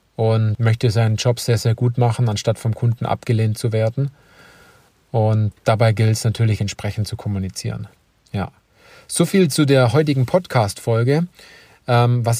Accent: German